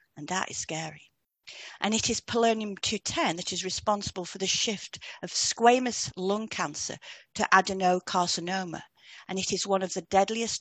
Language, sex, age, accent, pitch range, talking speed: English, female, 40-59, British, 180-225 Hz, 155 wpm